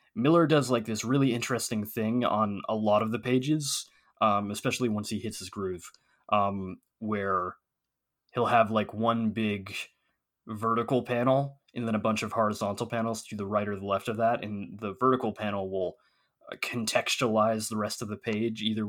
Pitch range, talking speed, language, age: 100-120 Hz, 180 wpm, English, 20-39